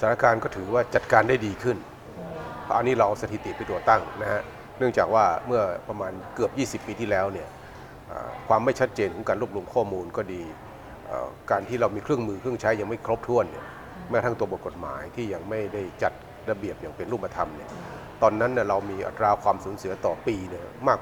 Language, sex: Thai, male